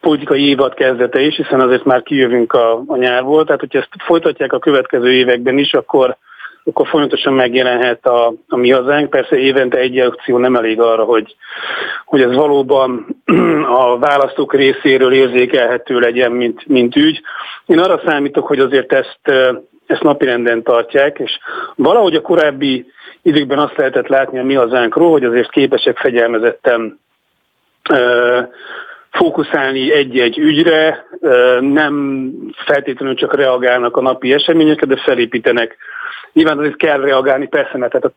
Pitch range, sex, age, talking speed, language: 120-145 Hz, male, 40-59, 140 wpm, Hungarian